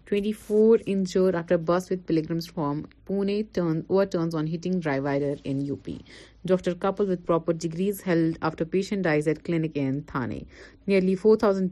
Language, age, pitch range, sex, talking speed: Urdu, 30-49, 155-190 Hz, female, 165 wpm